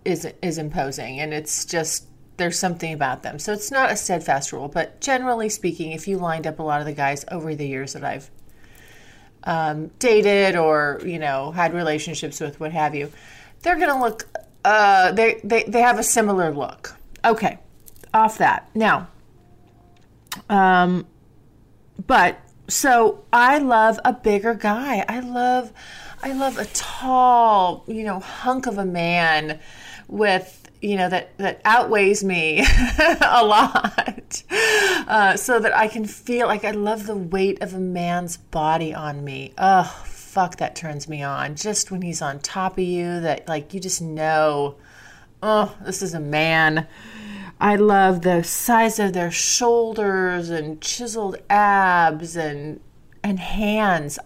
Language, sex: English, female